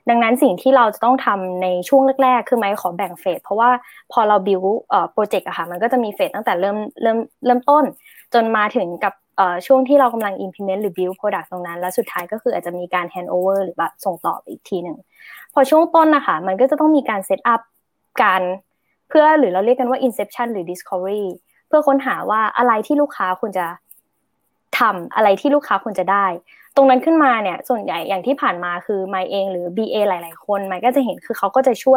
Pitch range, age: 190-260 Hz, 20-39